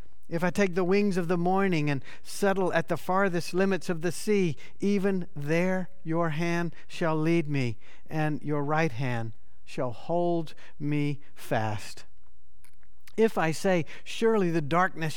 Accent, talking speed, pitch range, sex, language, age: American, 150 wpm, 130-180 Hz, male, English, 50-69